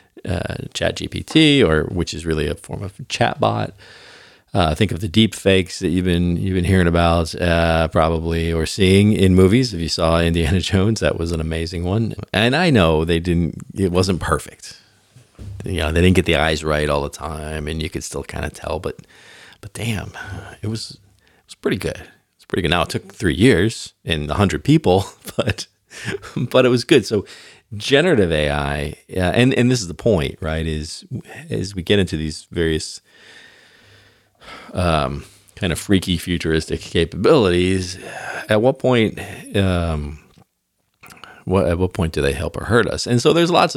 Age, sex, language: 40-59, male, English